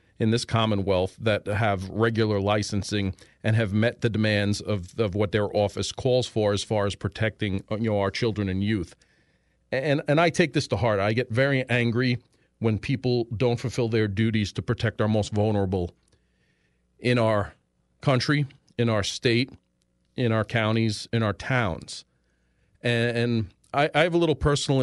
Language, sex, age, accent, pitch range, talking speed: English, male, 40-59, American, 100-125 Hz, 165 wpm